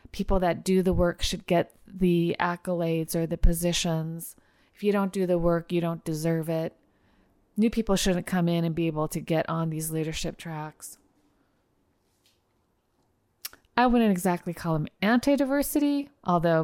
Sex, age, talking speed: female, 30-49, 155 wpm